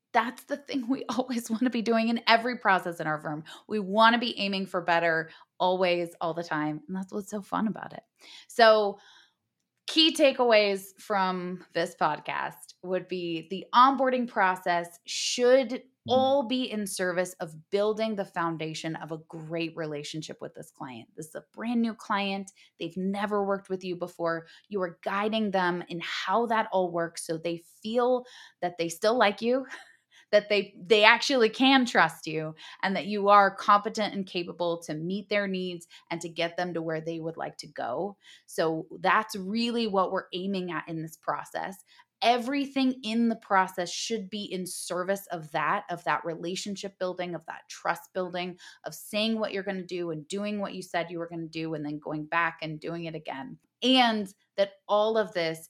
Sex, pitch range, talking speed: female, 170-220 Hz, 190 wpm